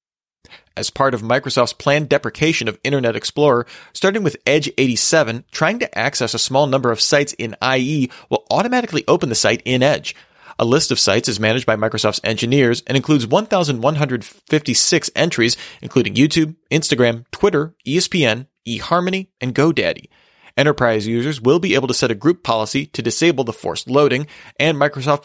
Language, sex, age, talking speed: English, male, 30-49, 160 wpm